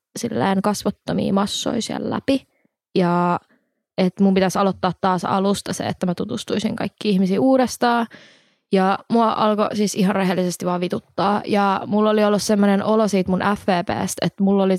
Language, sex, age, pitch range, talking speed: Finnish, female, 20-39, 185-210 Hz, 155 wpm